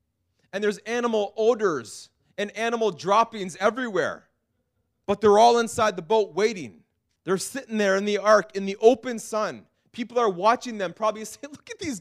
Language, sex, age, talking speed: English, male, 30-49, 170 wpm